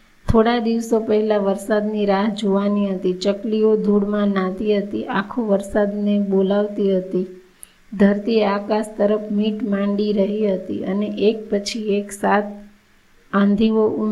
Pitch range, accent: 200-220 Hz, native